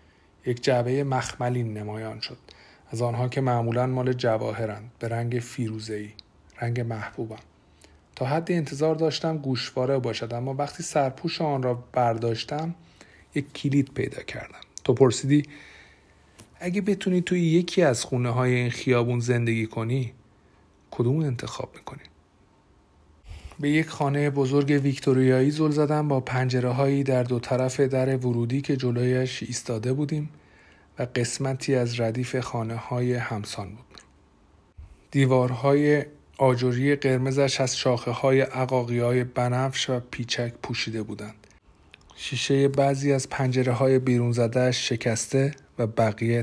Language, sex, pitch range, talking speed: Persian, male, 110-135 Hz, 125 wpm